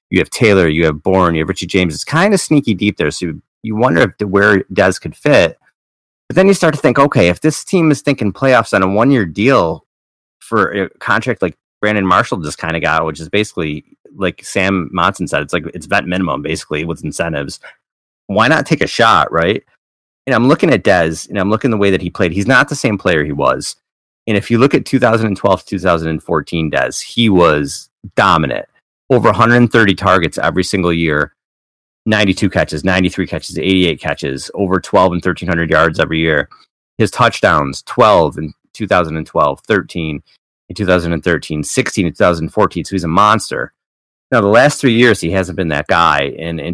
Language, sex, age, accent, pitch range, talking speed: English, male, 30-49, American, 80-105 Hz, 190 wpm